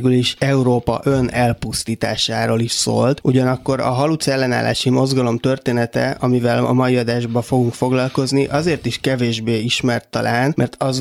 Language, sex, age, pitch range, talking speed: Hungarian, male, 20-39, 120-135 Hz, 130 wpm